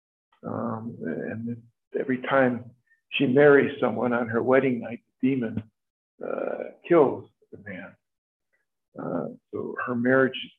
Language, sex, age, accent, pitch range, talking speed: English, male, 50-69, American, 110-130 Hz, 120 wpm